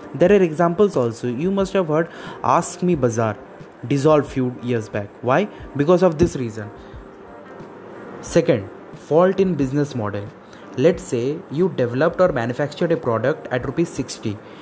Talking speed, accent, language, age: 150 wpm, Indian, English, 20-39